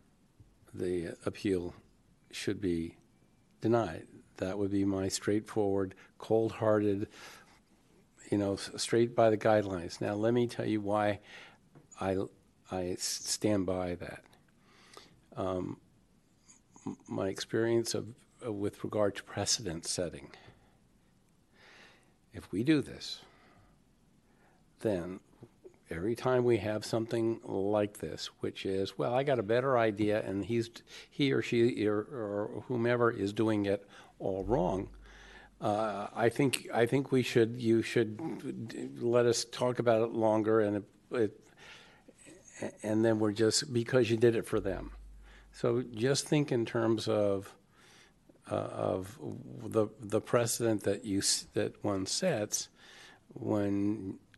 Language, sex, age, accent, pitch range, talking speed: English, male, 50-69, American, 100-115 Hz, 130 wpm